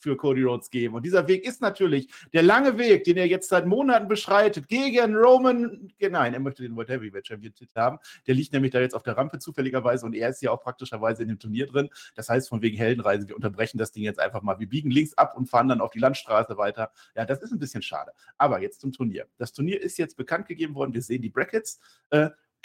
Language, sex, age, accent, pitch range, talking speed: German, male, 50-69, German, 125-185 Hz, 245 wpm